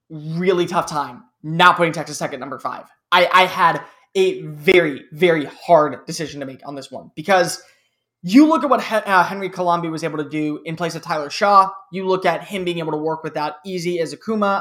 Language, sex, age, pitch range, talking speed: English, male, 20-39, 165-210 Hz, 205 wpm